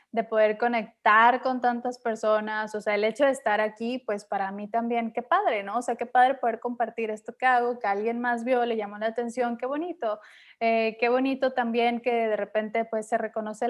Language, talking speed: Spanish, 215 wpm